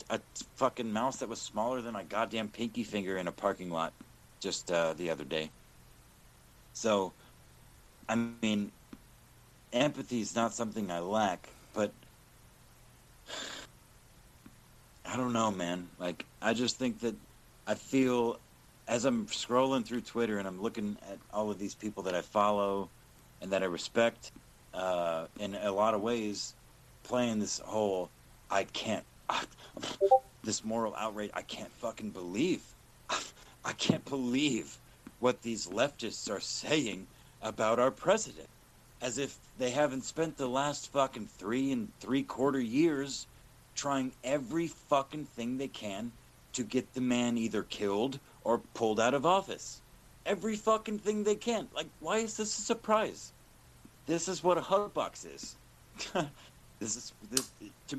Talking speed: 145 wpm